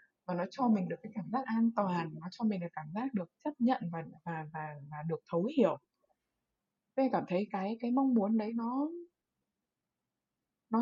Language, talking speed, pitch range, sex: Vietnamese, 200 wpm, 170-245 Hz, female